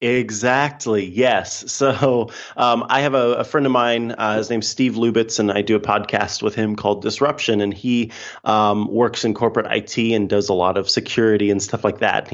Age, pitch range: 30-49, 105-125 Hz